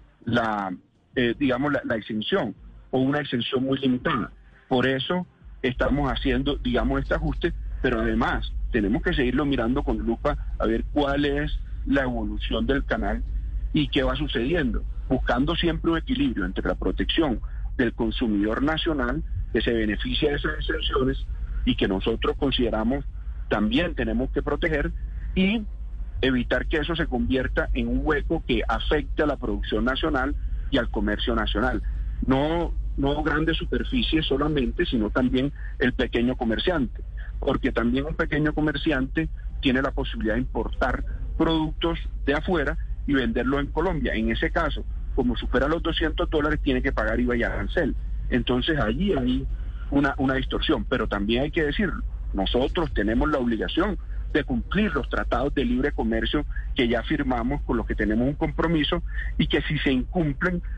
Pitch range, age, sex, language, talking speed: 115-150 Hz, 40-59, male, Spanish, 155 wpm